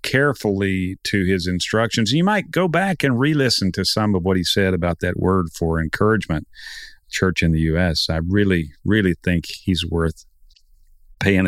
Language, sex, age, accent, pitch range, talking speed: English, male, 50-69, American, 90-110 Hz, 165 wpm